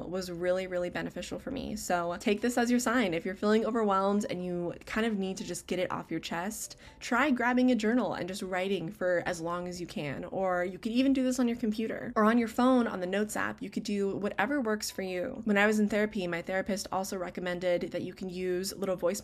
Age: 20-39